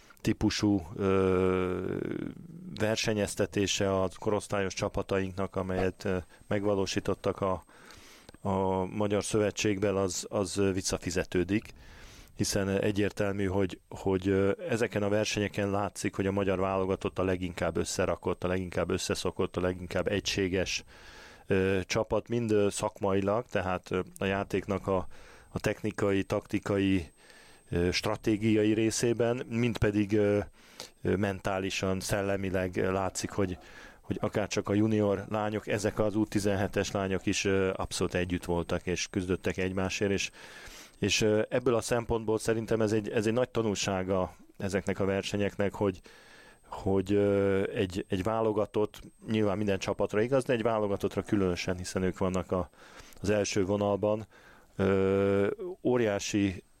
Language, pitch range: Hungarian, 95-105 Hz